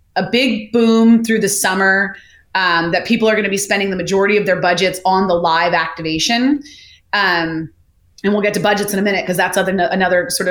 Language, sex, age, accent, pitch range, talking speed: English, female, 30-49, American, 180-210 Hz, 200 wpm